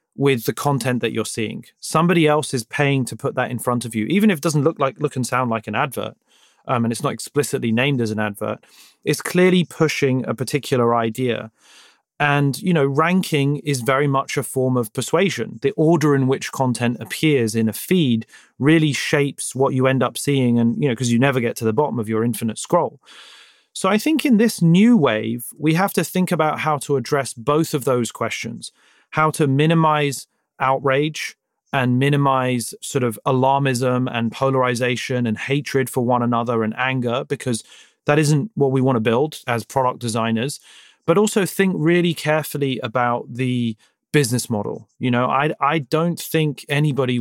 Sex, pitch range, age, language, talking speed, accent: male, 120-150 Hz, 30-49, English, 190 wpm, British